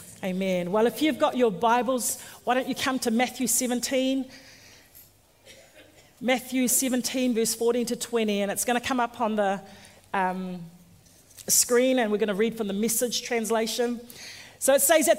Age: 40-59